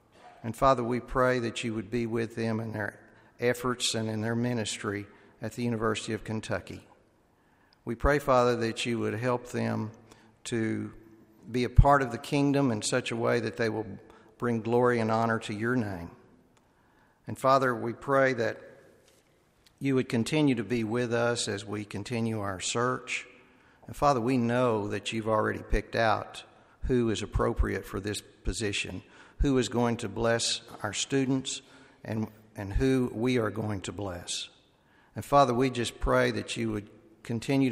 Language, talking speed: English, 170 wpm